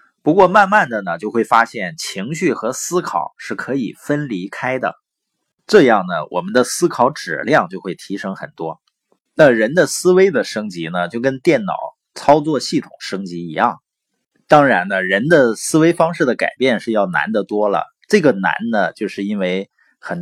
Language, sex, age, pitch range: Chinese, male, 30-49, 120-185 Hz